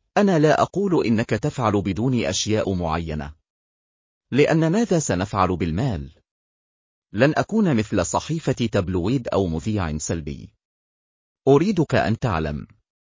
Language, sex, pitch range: Arabic, male, 85-135 Hz